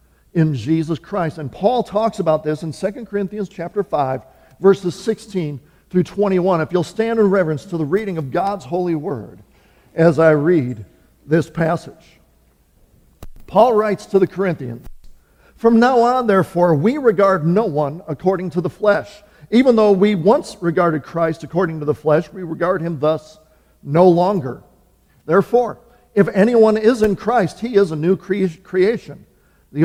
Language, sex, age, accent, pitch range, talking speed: English, male, 50-69, American, 155-210 Hz, 160 wpm